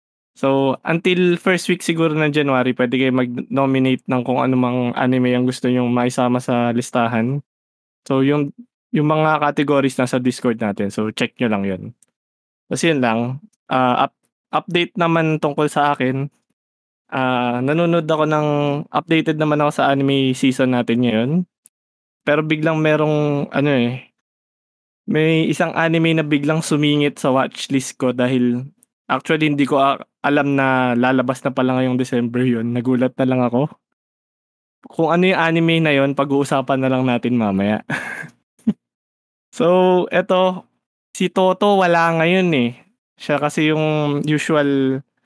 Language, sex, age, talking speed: Filipino, male, 20-39, 145 wpm